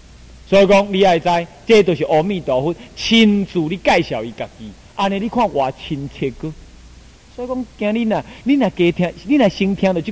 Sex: male